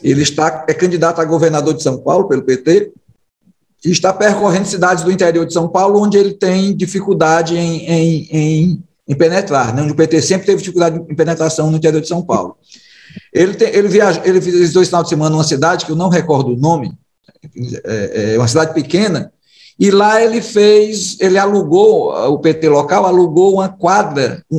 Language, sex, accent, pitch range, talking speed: Portuguese, male, Brazilian, 160-190 Hz, 180 wpm